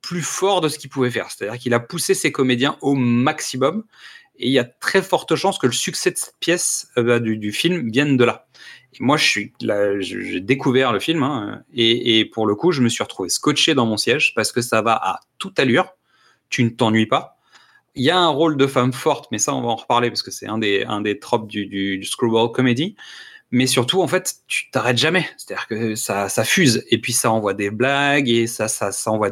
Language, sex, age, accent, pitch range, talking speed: French, male, 30-49, French, 115-145 Hz, 250 wpm